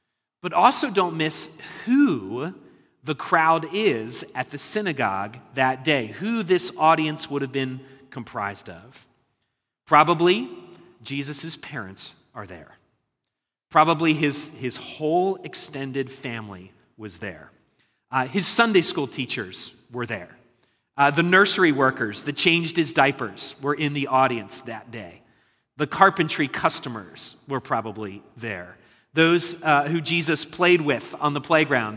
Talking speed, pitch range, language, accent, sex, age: 130 wpm, 120-165 Hz, English, American, male, 40-59